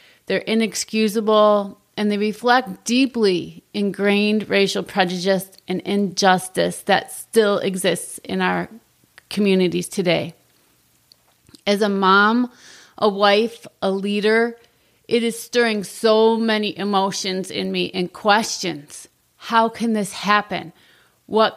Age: 30-49